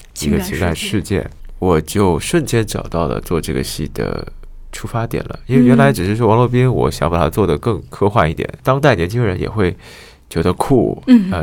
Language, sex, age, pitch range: Chinese, male, 20-39, 75-100 Hz